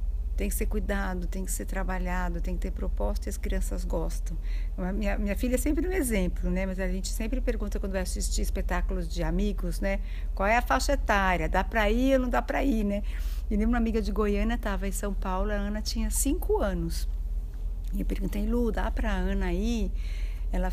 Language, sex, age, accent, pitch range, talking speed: Portuguese, female, 60-79, Brazilian, 185-255 Hz, 215 wpm